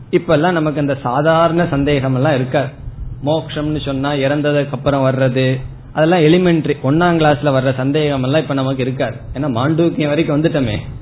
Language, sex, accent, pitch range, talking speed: Tamil, male, native, 120-155 Hz, 115 wpm